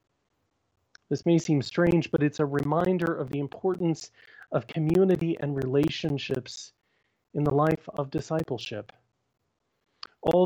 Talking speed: 120 wpm